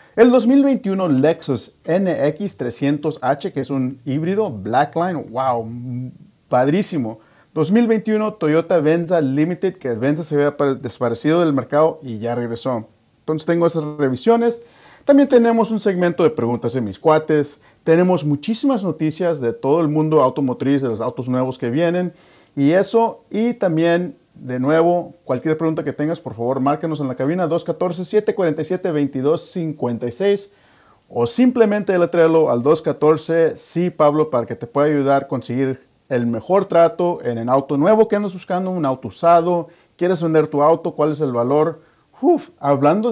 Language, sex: English, male